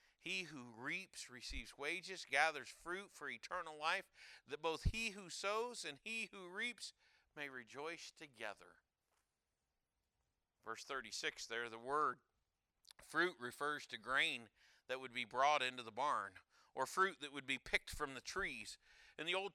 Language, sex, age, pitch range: English, male, 40-59, 130-200 Hz